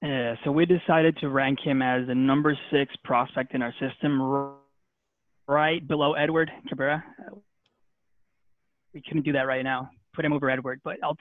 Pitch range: 130-160 Hz